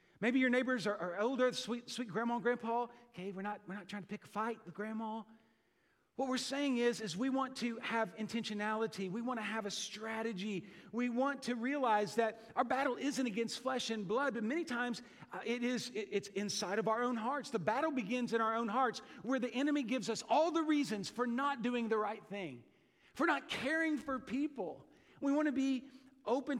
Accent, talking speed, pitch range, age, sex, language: American, 215 wpm, 200-245 Hz, 40-59, male, English